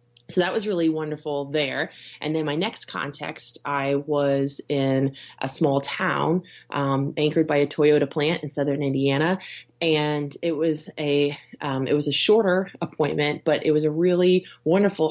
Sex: female